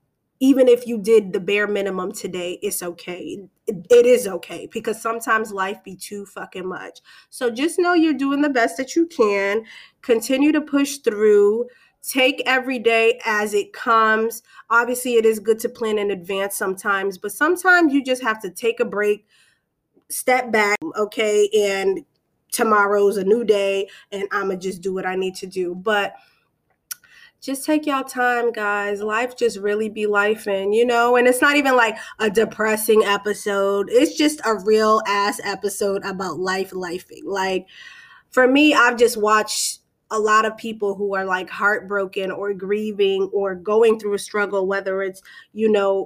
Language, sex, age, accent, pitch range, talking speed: English, female, 20-39, American, 200-245 Hz, 170 wpm